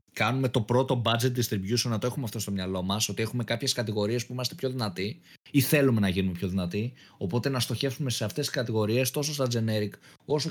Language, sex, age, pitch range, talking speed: Greek, male, 20-39, 100-135 Hz, 210 wpm